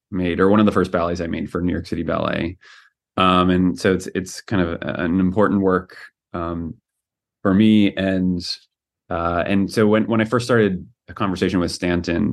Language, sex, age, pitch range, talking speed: English, male, 20-39, 90-105 Hz, 200 wpm